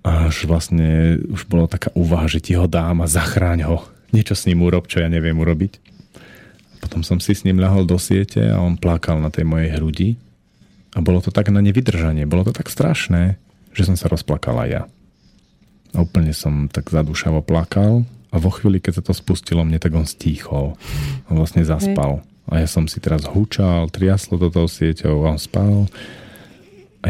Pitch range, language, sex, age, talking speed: 80-95 Hz, Slovak, male, 40-59, 185 wpm